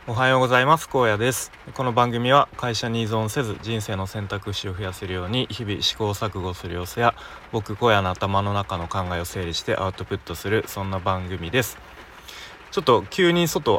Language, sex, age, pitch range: Japanese, male, 20-39, 95-120 Hz